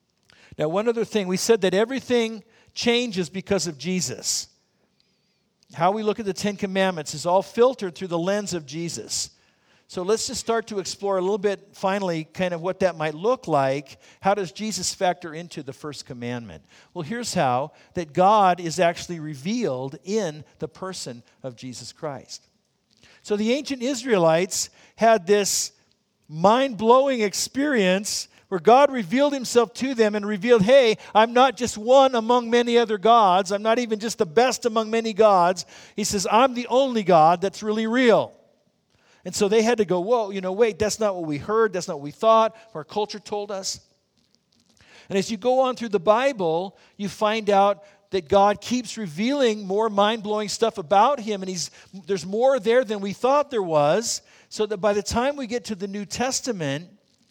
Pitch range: 180-230 Hz